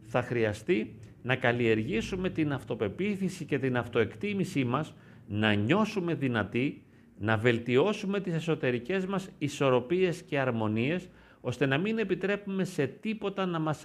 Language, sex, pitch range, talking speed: Greek, male, 130-190 Hz, 125 wpm